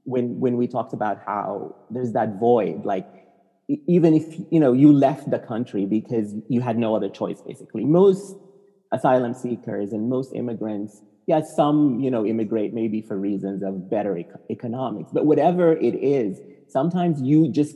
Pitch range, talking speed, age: 110-150 Hz, 170 wpm, 30-49